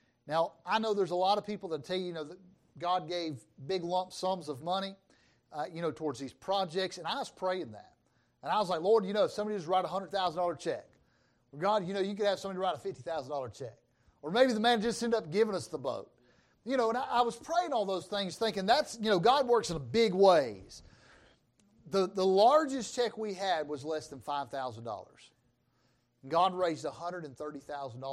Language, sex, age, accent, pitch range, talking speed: English, male, 40-59, American, 145-195 Hz, 210 wpm